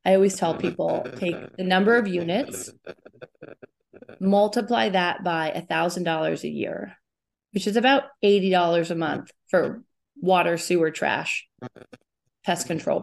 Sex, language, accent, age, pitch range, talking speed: female, English, American, 20-39, 170-210 Hz, 125 wpm